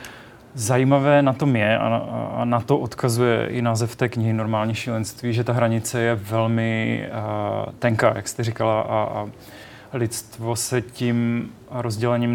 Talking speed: 140 wpm